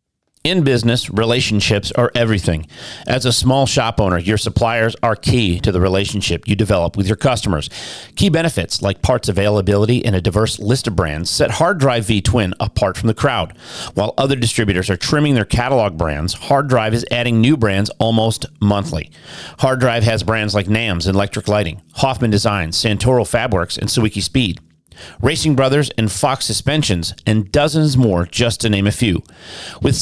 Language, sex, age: English, male, 40-59